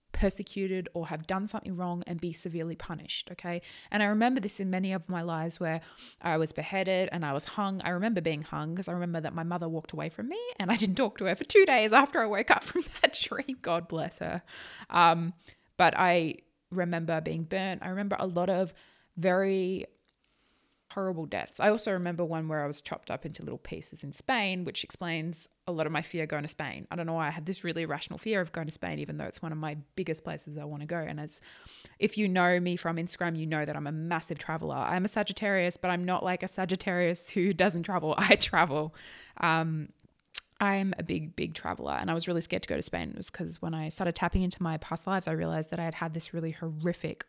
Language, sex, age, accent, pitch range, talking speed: English, female, 20-39, Australian, 160-190 Hz, 240 wpm